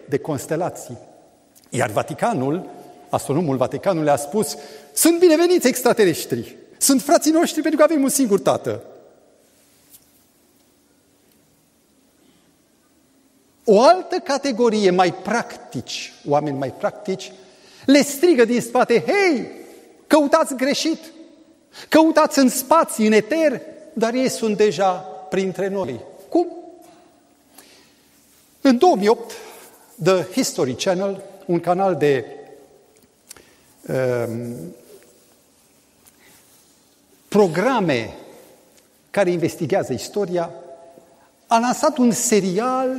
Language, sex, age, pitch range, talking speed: Romanian, male, 40-59, 180-300 Hz, 90 wpm